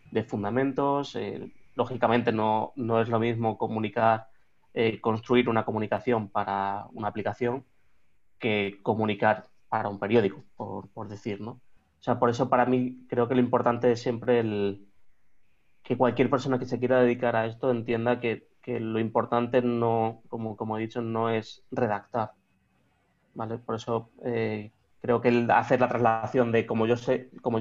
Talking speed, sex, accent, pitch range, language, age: 165 wpm, male, Spanish, 105-120 Hz, Spanish, 20-39